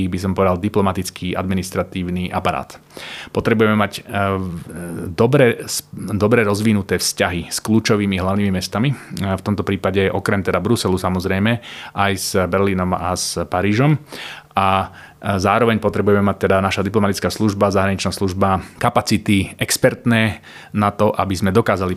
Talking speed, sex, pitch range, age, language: 125 wpm, male, 95-105 Hz, 30-49, Slovak